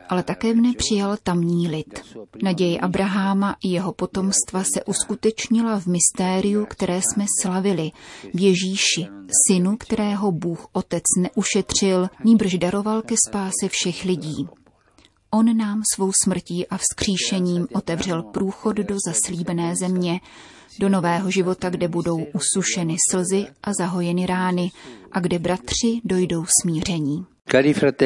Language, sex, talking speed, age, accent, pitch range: Czech, female, 120 wpm, 30-49, native, 170-200 Hz